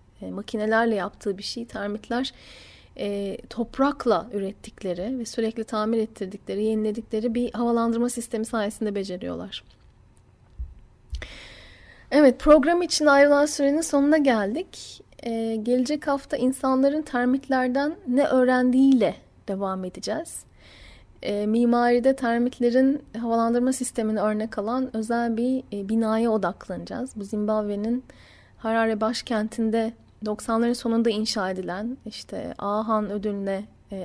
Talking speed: 105 wpm